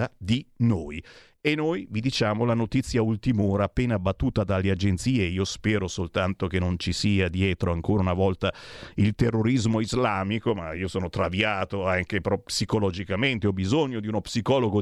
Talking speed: 155 wpm